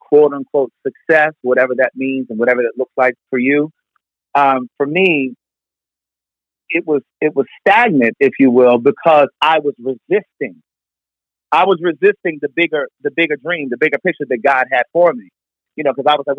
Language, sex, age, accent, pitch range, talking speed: English, male, 40-59, American, 125-165 Hz, 180 wpm